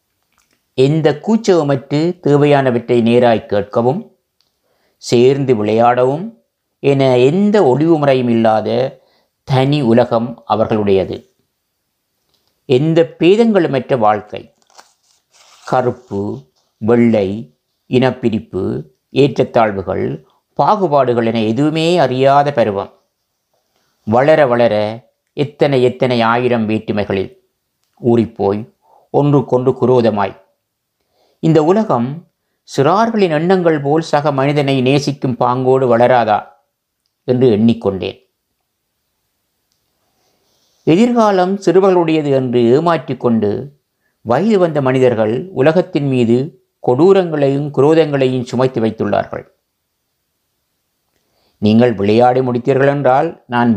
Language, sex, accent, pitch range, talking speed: Tamil, male, native, 120-155 Hz, 75 wpm